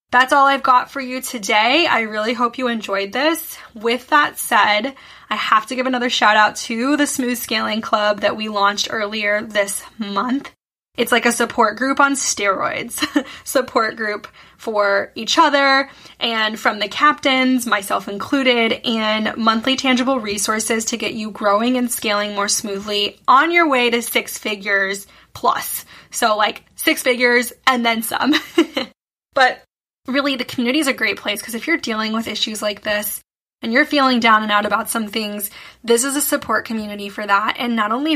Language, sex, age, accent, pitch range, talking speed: English, female, 10-29, American, 215-260 Hz, 180 wpm